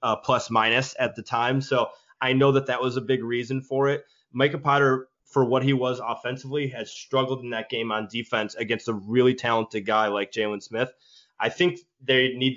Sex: male